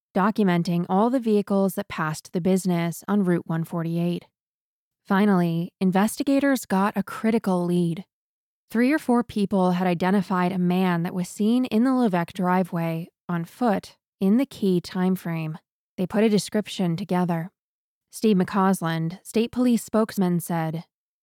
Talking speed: 140 wpm